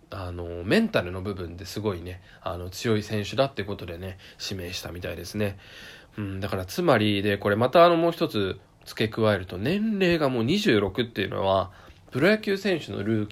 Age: 20-39